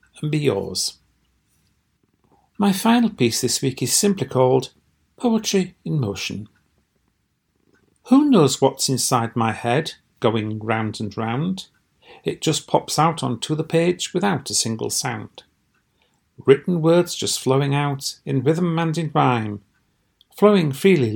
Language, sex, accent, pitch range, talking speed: English, male, British, 120-165 Hz, 135 wpm